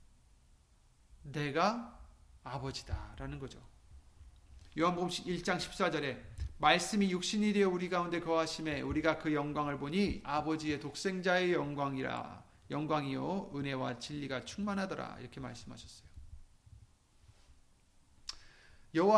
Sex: male